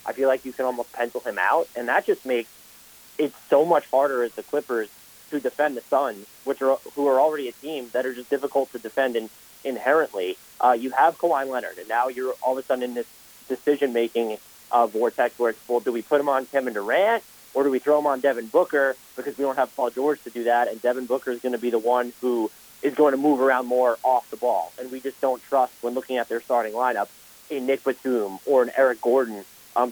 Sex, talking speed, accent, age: male, 245 wpm, American, 30-49